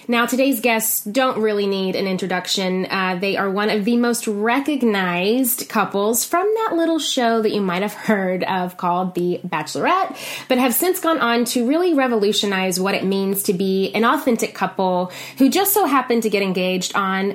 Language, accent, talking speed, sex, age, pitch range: English, American, 185 wpm, female, 20-39, 190-255 Hz